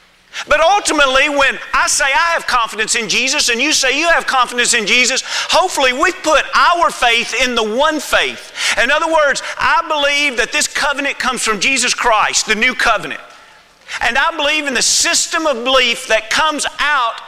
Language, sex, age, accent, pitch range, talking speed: English, male, 40-59, American, 220-320 Hz, 185 wpm